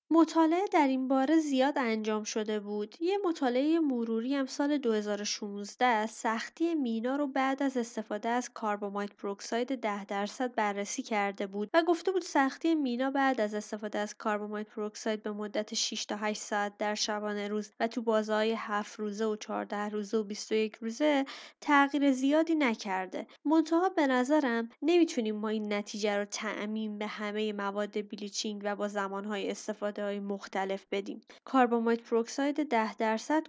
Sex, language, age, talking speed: female, Persian, 20-39, 140 wpm